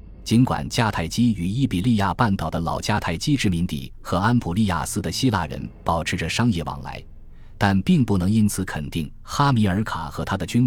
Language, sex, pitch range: Chinese, male, 85-115 Hz